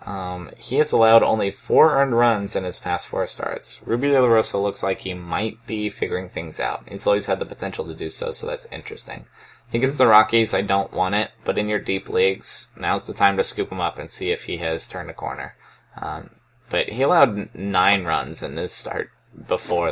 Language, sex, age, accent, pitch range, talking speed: English, male, 20-39, American, 105-140 Hz, 225 wpm